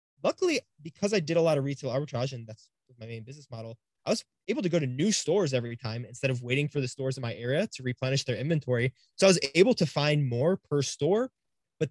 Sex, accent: male, American